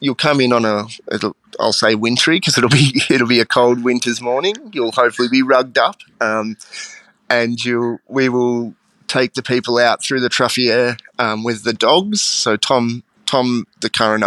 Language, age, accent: English, 20-39, Australian